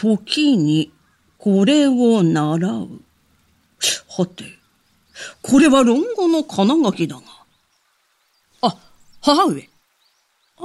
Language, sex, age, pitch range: Japanese, female, 50-69, 180-260 Hz